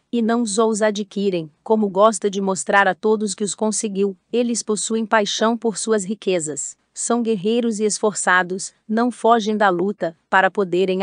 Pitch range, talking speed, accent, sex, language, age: 190-220 Hz, 165 wpm, Brazilian, female, Portuguese, 40-59